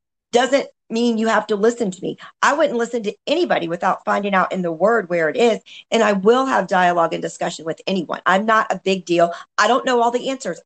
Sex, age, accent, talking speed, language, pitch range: female, 40-59, American, 235 wpm, English, 190-245 Hz